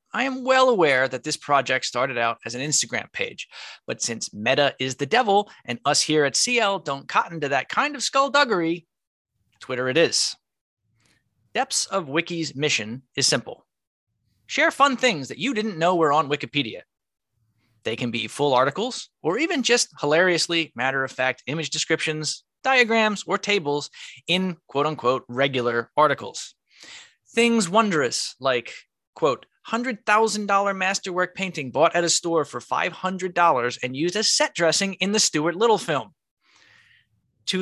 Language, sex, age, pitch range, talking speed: English, male, 20-39, 135-210 Hz, 150 wpm